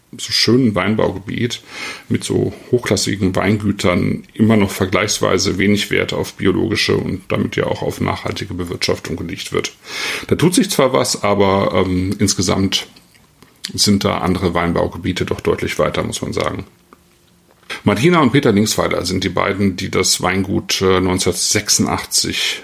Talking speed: 140 wpm